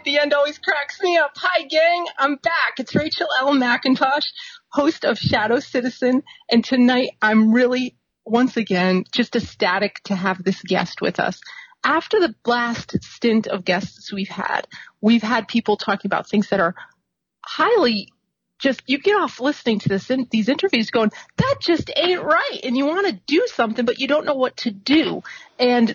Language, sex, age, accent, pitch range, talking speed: English, female, 30-49, American, 215-295 Hz, 180 wpm